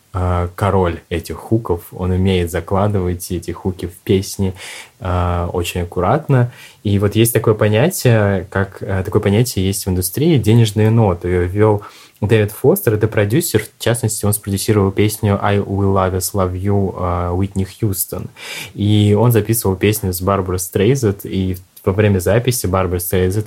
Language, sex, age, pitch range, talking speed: Russian, male, 20-39, 95-110 Hz, 145 wpm